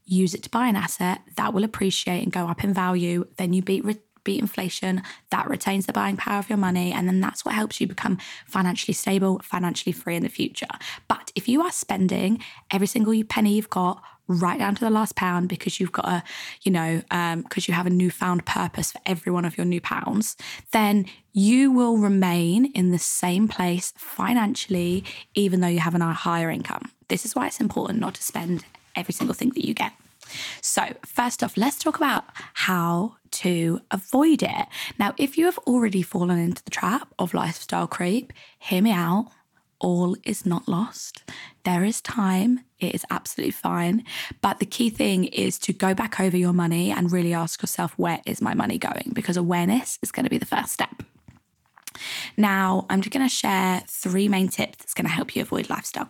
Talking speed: 200 wpm